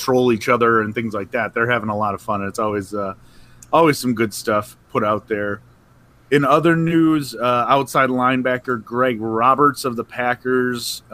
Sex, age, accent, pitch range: male, 30-49, American, 110-135 Hz